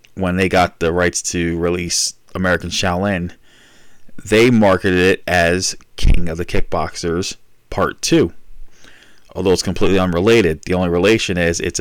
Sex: male